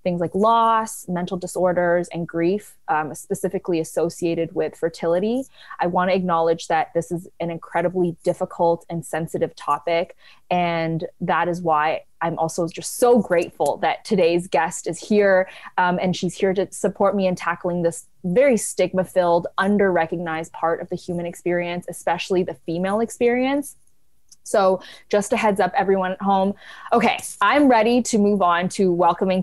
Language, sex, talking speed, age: English, female, 155 wpm, 20-39